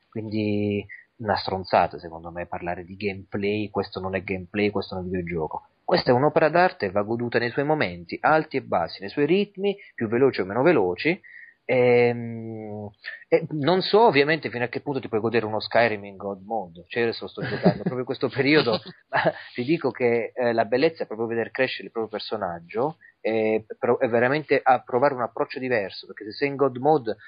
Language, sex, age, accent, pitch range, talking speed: Italian, male, 30-49, native, 105-135 Hz, 200 wpm